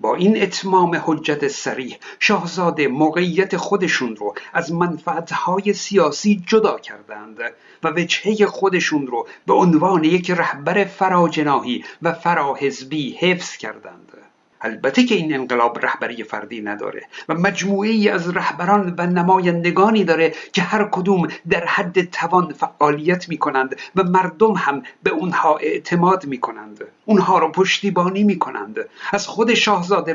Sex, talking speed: male, 130 wpm